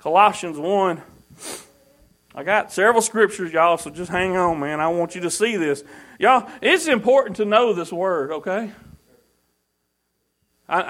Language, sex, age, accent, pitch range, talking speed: English, male, 40-59, American, 195-275 Hz, 150 wpm